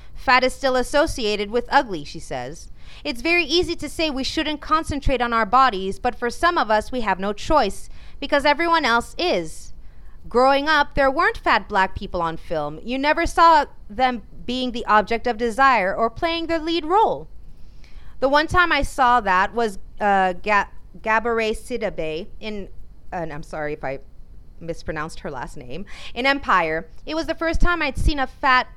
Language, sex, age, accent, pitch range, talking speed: English, female, 30-49, American, 190-275 Hz, 185 wpm